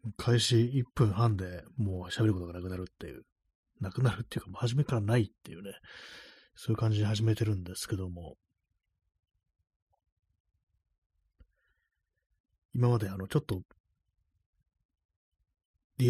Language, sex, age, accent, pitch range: Japanese, male, 30-49, native, 95-120 Hz